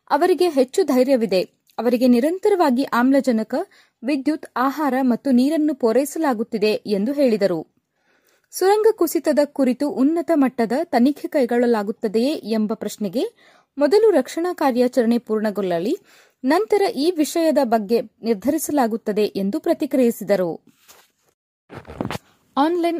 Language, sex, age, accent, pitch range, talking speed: Kannada, female, 20-39, native, 225-315 Hz, 90 wpm